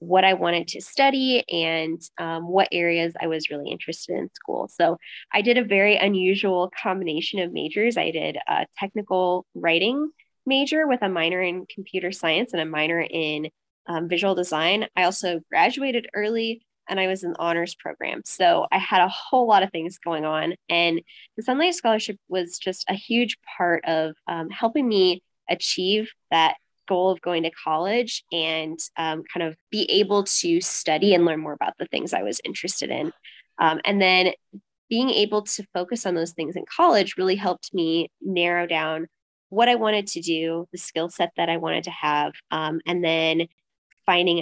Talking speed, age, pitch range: 185 wpm, 10-29, 165-205 Hz